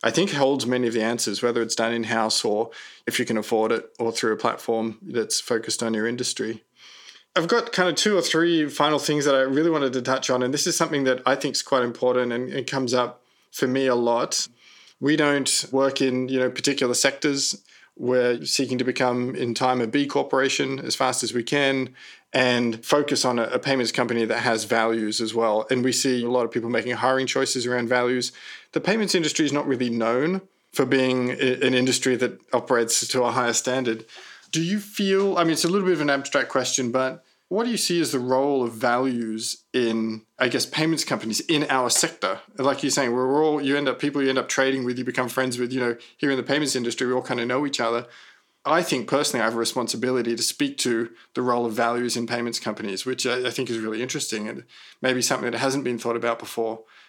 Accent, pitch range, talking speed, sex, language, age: Australian, 120-140 Hz, 230 wpm, male, English, 20-39